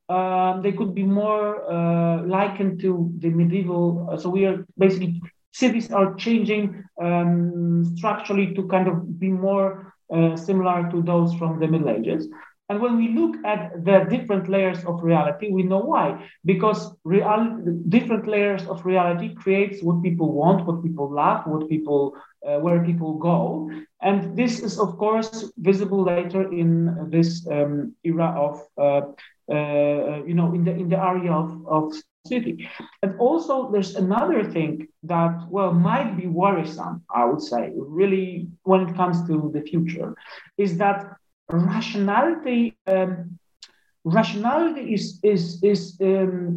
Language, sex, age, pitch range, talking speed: English, male, 40-59, 170-210 Hz, 150 wpm